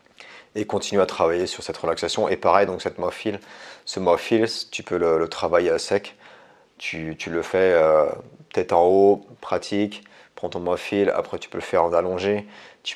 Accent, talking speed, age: French, 190 wpm, 40-59